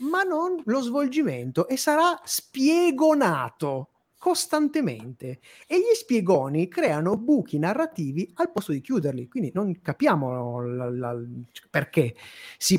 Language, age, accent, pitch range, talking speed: Italian, 30-49, native, 155-260 Hz, 110 wpm